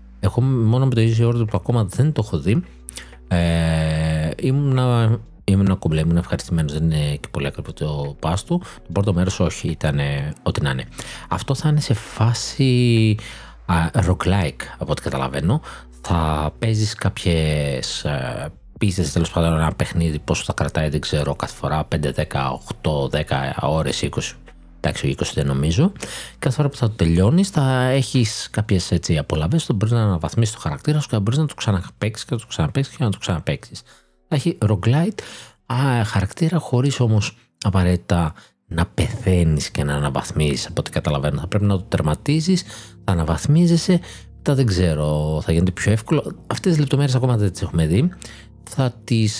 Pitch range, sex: 80-120 Hz, male